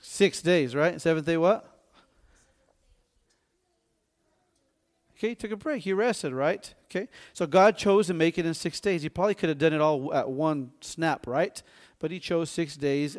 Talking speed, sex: 180 wpm, male